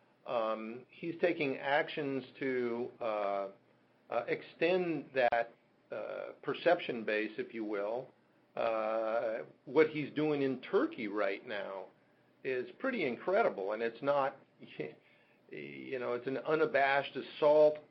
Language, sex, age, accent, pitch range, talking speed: English, male, 50-69, American, 115-135 Hz, 115 wpm